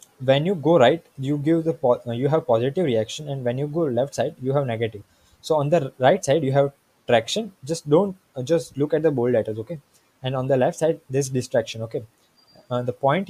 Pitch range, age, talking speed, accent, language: 125-155 Hz, 20-39, 235 wpm, Indian, English